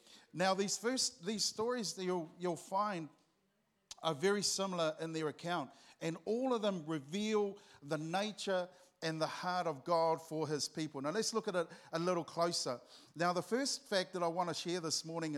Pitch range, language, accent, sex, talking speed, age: 150-190 Hz, English, Australian, male, 190 wpm, 50-69